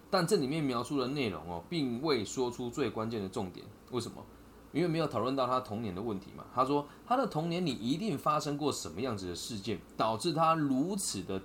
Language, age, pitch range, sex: Chinese, 20-39, 100-140 Hz, male